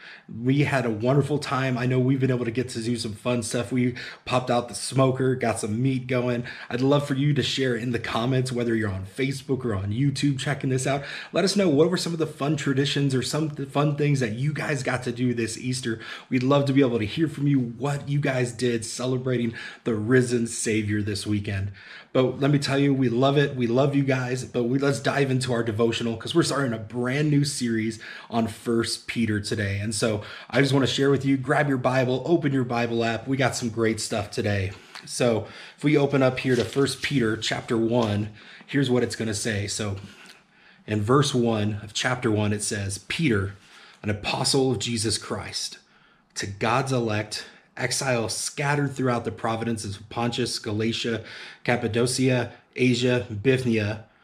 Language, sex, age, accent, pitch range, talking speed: English, male, 30-49, American, 115-135 Hz, 205 wpm